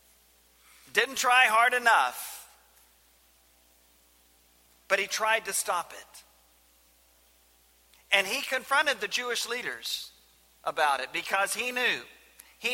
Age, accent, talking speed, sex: 40-59, American, 105 wpm, male